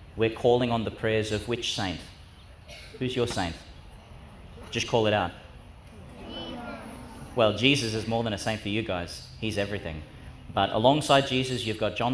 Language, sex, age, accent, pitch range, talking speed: English, male, 30-49, Australian, 100-130 Hz, 165 wpm